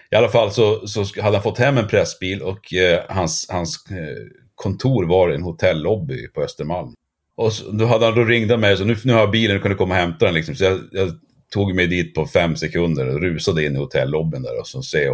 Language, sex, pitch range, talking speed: Swedish, male, 90-130 Hz, 250 wpm